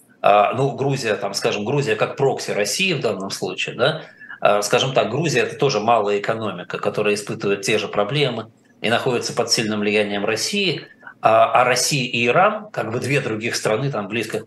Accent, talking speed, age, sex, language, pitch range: native, 170 wpm, 20-39, male, Russian, 110-140 Hz